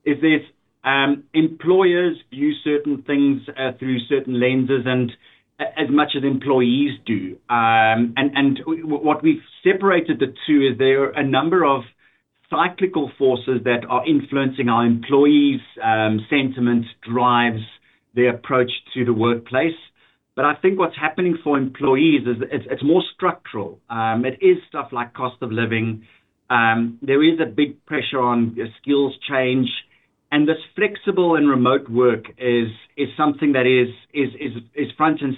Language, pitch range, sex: English, 125-150 Hz, male